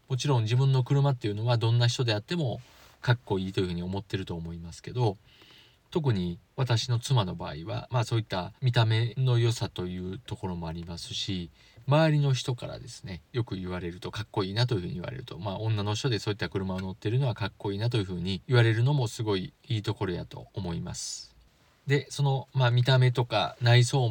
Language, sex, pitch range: Japanese, male, 100-130 Hz